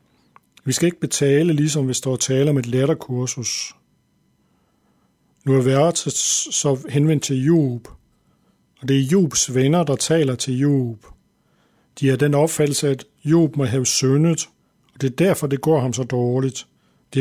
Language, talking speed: Danish, 165 wpm